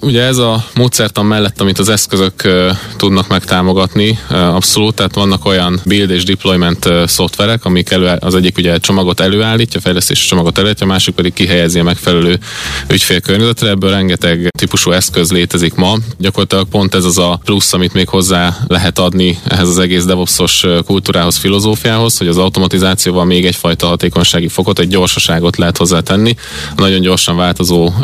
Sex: male